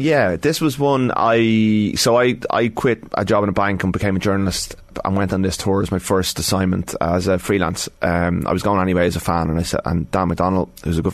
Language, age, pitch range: English, 20-39, 90-100 Hz